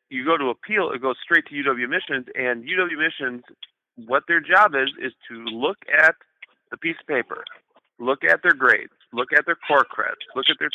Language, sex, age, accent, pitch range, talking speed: English, male, 30-49, American, 125-155 Hz, 205 wpm